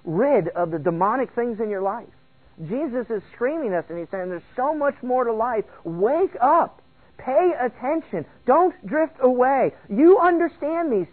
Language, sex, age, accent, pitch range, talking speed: English, male, 40-59, American, 155-230 Hz, 175 wpm